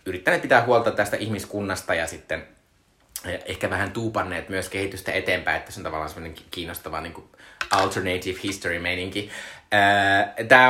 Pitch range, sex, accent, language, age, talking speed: 90-110 Hz, male, native, Finnish, 20-39, 130 wpm